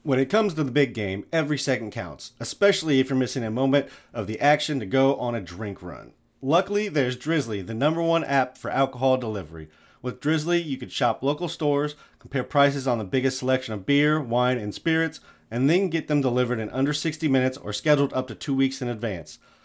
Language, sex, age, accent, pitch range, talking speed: English, male, 30-49, American, 125-155 Hz, 215 wpm